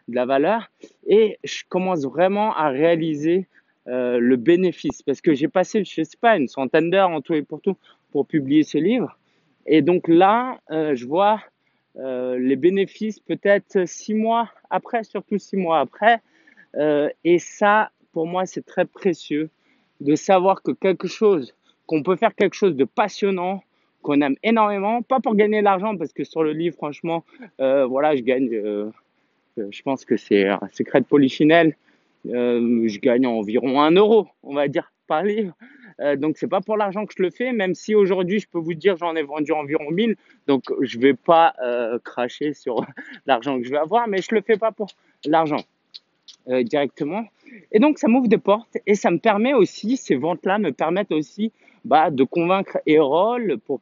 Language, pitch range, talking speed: French, 145-210 Hz, 190 wpm